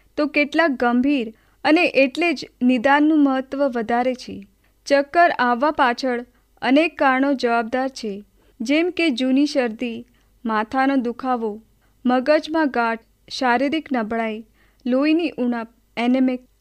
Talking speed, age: 85 wpm, 30-49